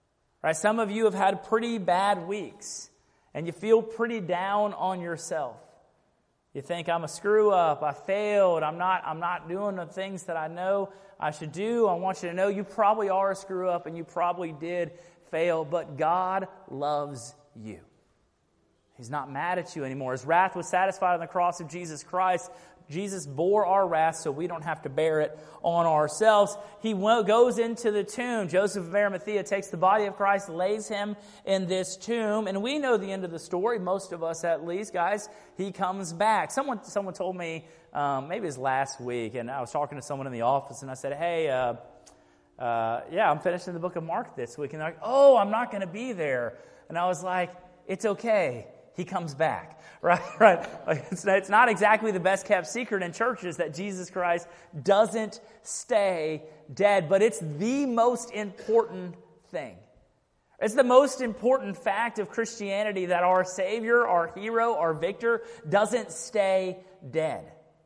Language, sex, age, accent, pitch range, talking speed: English, male, 30-49, American, 165-210 Hz, 185 wpm